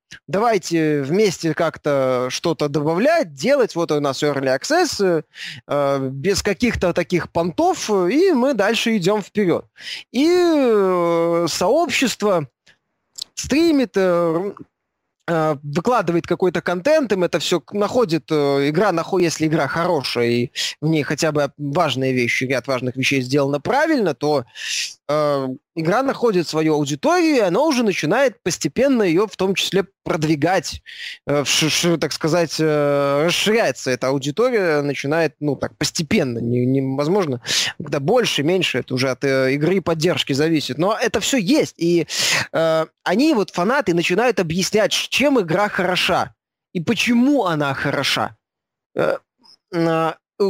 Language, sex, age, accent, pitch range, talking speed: Russian, male, 20-39, native, 145-215 Hz, 135 wpm